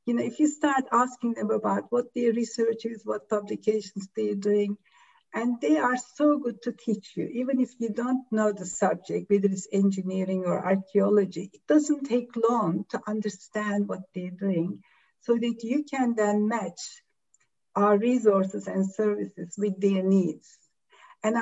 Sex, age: female, 60-79